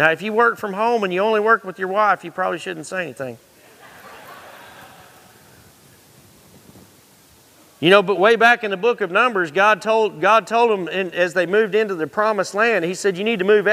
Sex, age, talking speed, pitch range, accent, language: male, 40-59, 195 wpm, 180-220 Hz, American, English